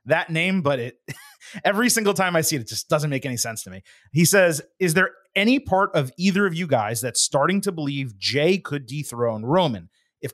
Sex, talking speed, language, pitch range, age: male, 220 wpm, English, 130-170 Hz, 30-49